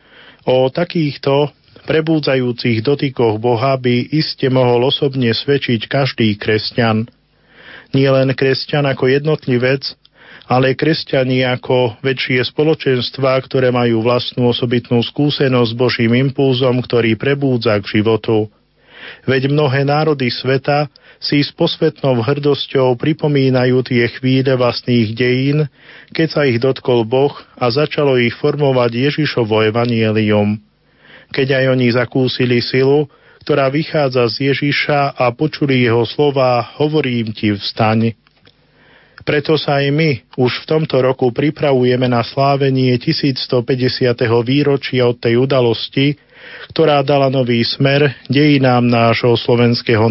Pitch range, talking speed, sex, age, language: 120-140 Hz, 115 wpm, male, 40-59, Slovak